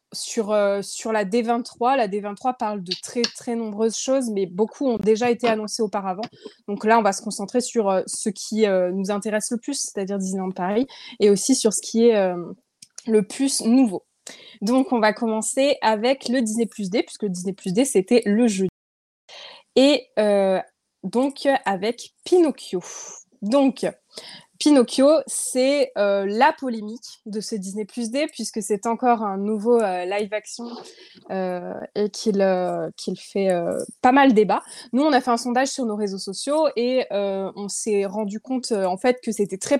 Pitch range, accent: 200-255 Hz, French